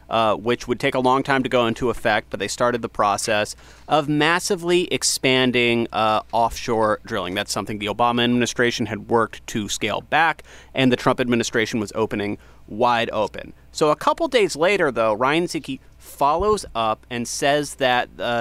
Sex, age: male, 30-49